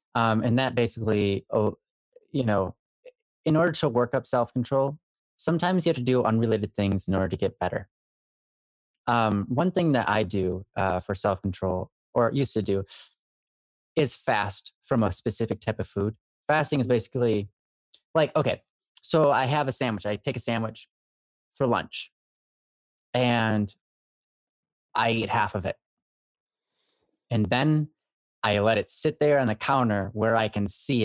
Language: English